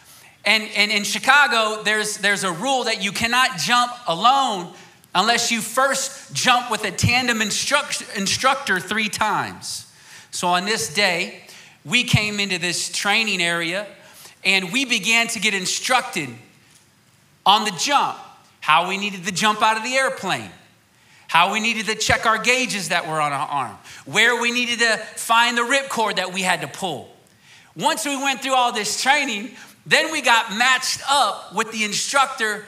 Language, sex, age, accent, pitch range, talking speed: English, male, 30-49, American, 185-235 Hz, 170 wpm